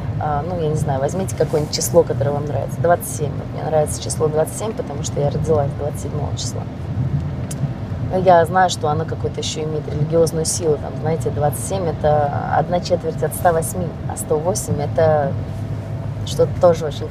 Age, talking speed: 20-39, 155 wpm